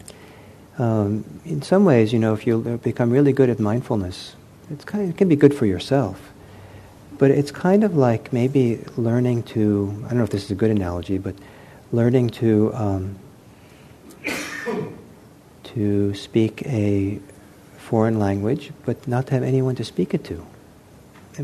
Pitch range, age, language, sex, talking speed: 105-135 Hz, 50-69, English, male, 160 wpm